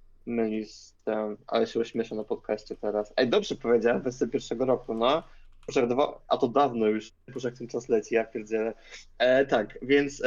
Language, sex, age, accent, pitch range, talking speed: Polish, male, 20-39, native, 115-135 Hz, 160 wpm